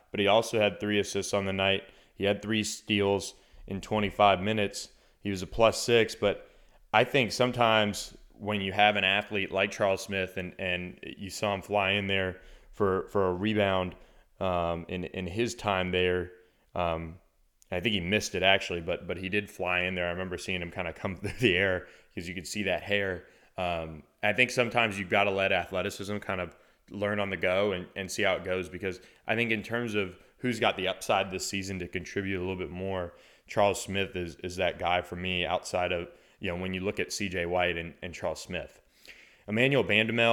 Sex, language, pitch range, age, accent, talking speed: male, English, 90-105 Hz, 20-39, American, 215 wpm